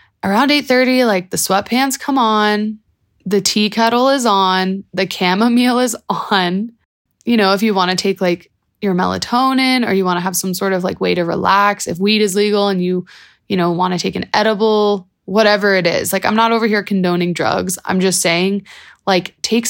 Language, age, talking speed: English, 20-39, 200 wpm